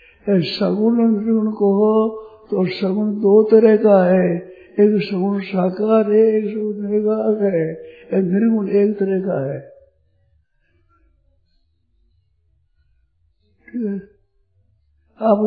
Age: 60-79